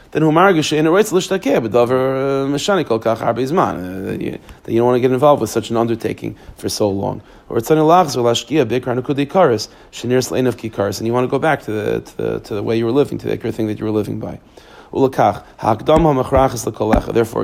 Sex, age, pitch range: male, 30-49, 115-155 Hz